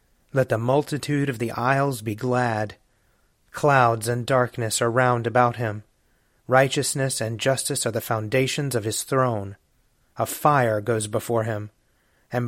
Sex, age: male, 30-49